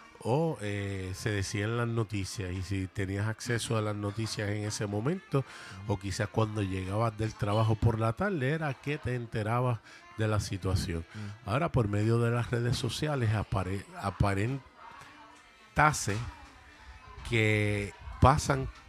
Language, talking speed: Spanish, 135 wpm